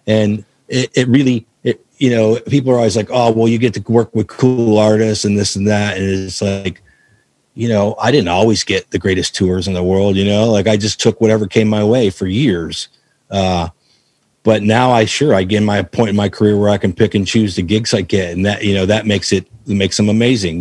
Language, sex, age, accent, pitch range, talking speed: English, male, 40-59, American, 95-115 Hz, 245 wpm